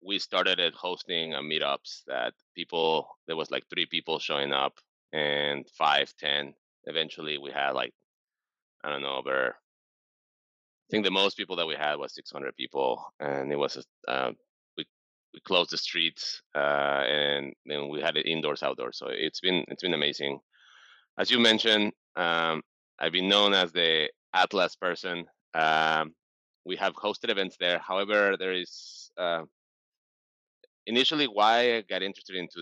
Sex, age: male, 30-49